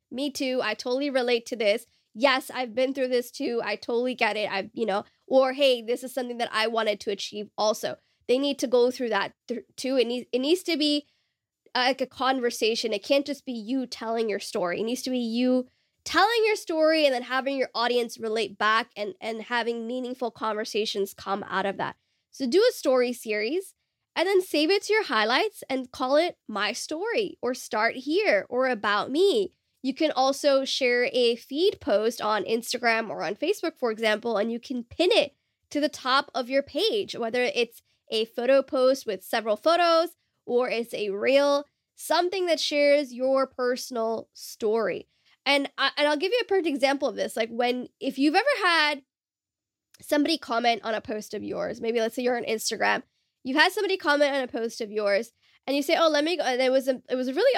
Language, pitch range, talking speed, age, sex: English, 230-290 Hz, 210 wpm, 10-29, female